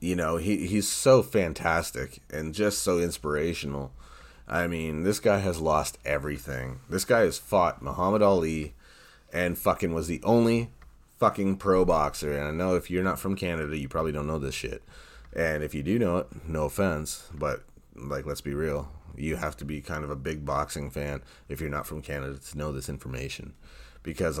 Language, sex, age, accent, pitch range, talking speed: English, male, 30-49, American, 70-85 Hz, 190 wpm